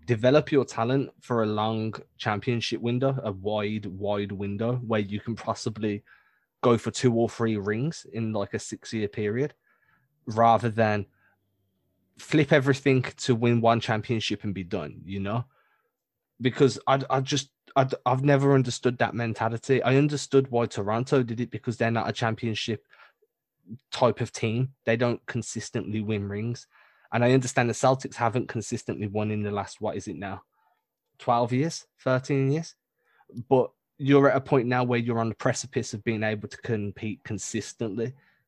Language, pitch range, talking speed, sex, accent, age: English, 110-130 Hz, 165 wpm, male, British, 20-39